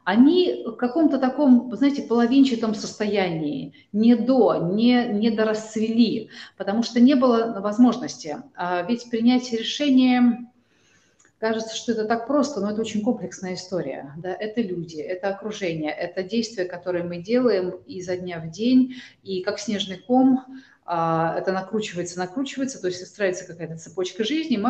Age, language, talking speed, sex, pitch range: 30-49, Russian, 145 wpm, female, 180-235 Hz